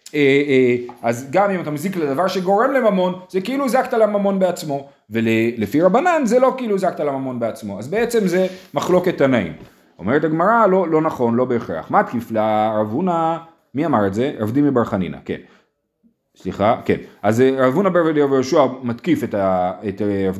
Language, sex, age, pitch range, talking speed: Hebrew, male, 30-49, 125-185 Hz, 175 wpm